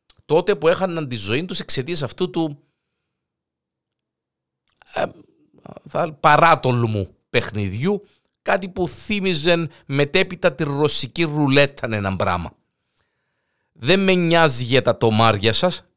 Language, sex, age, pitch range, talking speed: Greek, male, 50-69, 105-165 Hz, 105 wpm